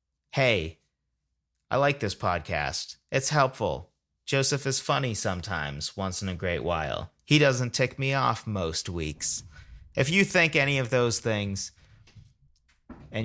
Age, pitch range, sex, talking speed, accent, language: 30-49, 90-130 Hz, male, 140 wpm, American, English